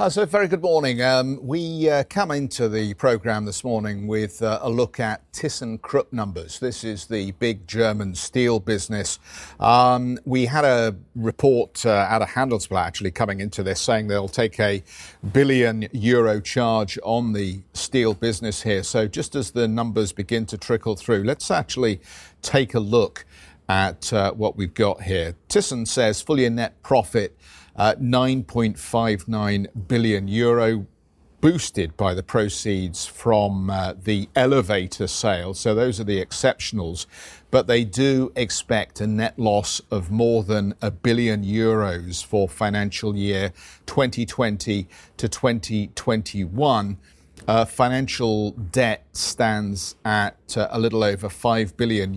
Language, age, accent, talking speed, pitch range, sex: English, 50-69, British, 145 wpm, 100-120 Hz, male